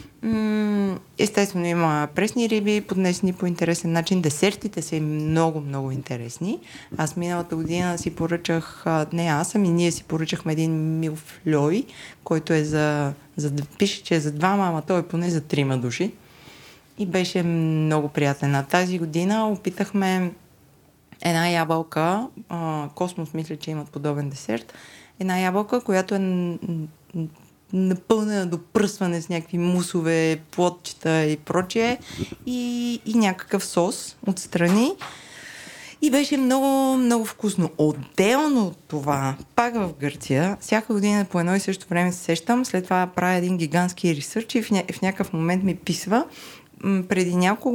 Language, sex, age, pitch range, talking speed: Bulgarian, female, 20-39, 160-200 Hz, 145 wpm